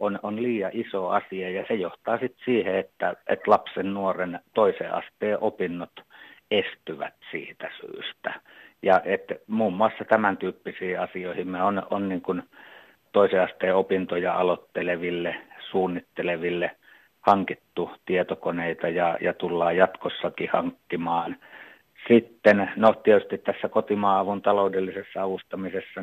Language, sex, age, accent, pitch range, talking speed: Finnish, male, 50-69, native, 90-105 Hz, 115 wpm